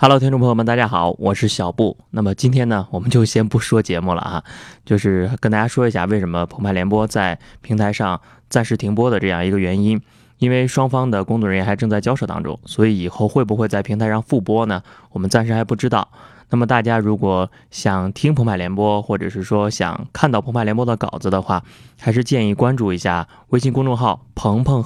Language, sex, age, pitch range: Chinese, male, 20-39, 95-115 Hz